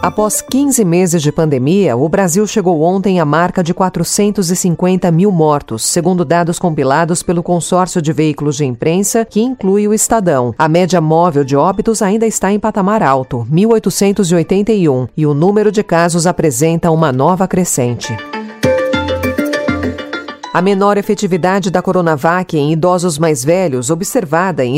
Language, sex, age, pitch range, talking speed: Portuguese, female, 40-59, 155-205 Hz, 145 wpm